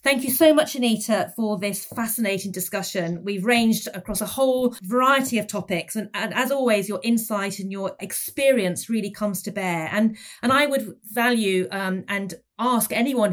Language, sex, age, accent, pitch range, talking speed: English, female, 40-59, British, 190-245 Hz, 175 wpm